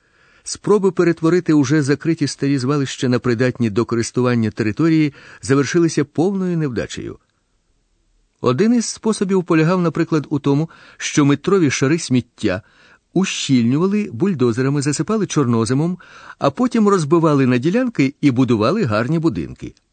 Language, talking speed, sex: Ukrainian, 115 wpm, male